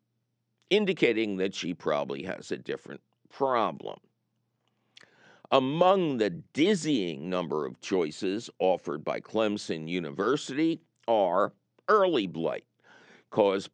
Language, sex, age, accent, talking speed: English, male, 50-69, American, 95 wpm